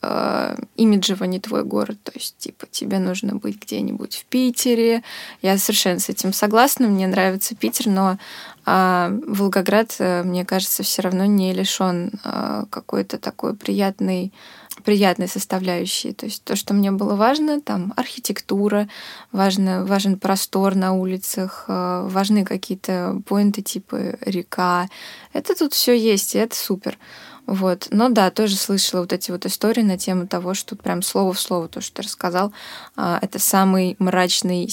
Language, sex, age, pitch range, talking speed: Russian, female, 20-39, 185-225 Hz, 150 wpm